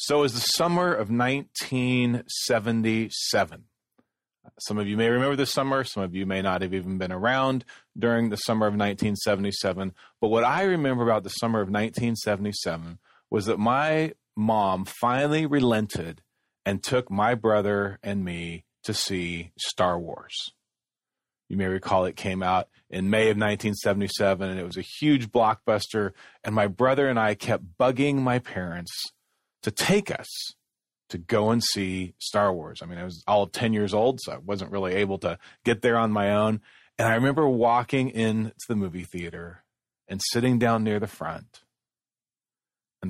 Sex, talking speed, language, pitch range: male, 170 wpm, English, 95-120 Hz